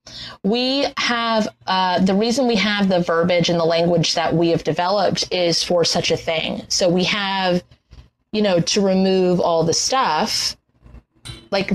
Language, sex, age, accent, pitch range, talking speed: English, female, 20-39, American, 170-220 Hz, 165 wpm